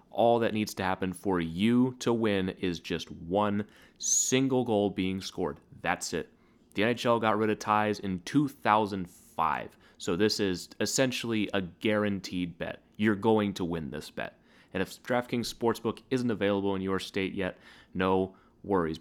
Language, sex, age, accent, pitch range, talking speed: English, male, 30-49, American, 90-110 Hz, 160 wpm